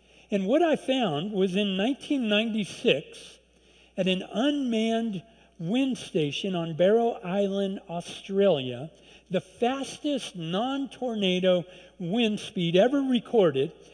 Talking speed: 100 wpm